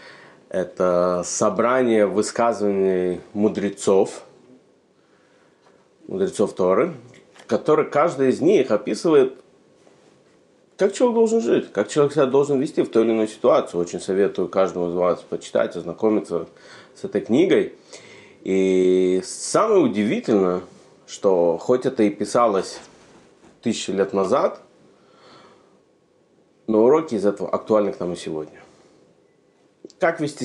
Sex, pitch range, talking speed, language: male, 95-130 Hz, 110 wpm, Russian